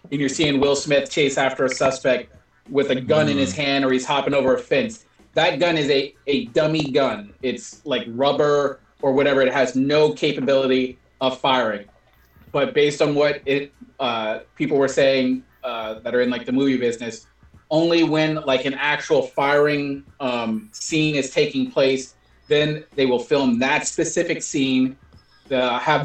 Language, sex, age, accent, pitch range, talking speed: English, male, 30-49, American, 130-150 Hz, 175 wpm